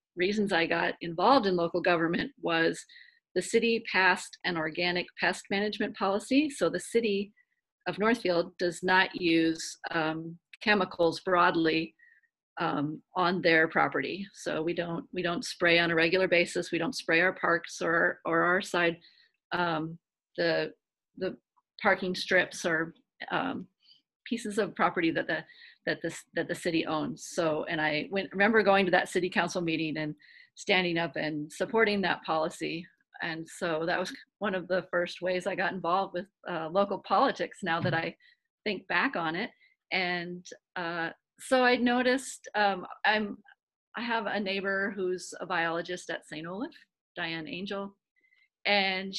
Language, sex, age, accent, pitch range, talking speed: English, female, 40-59, American, 170-205 Hz, 155 wpm